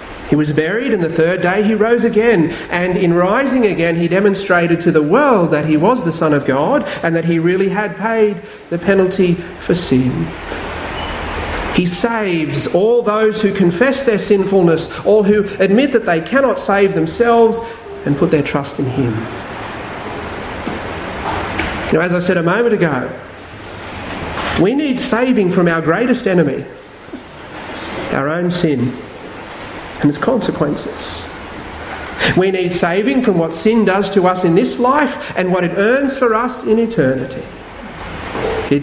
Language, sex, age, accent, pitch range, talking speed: English, male, 40-59, Australian, 155-220 Hz, 150 wpm